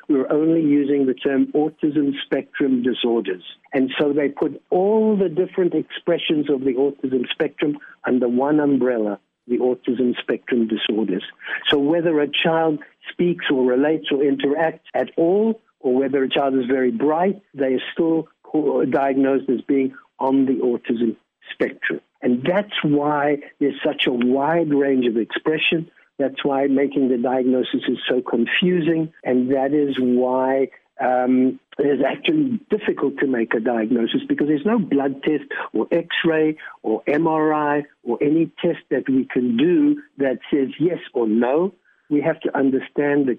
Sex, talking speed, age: male, 155 wpm, 60-79